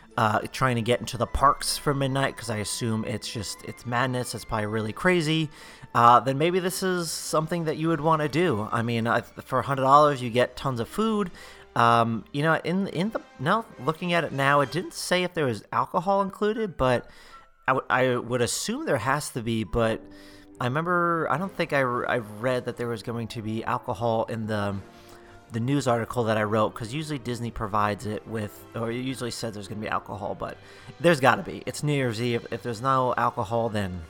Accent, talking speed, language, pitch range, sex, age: American, 225 wpm, English, 115-150 Hz, male, 30-49